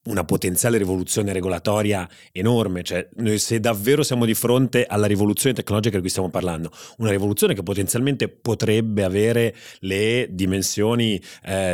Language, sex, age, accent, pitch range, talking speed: Italian, male, 30-49, native, 100-115 Hz, 145 wpm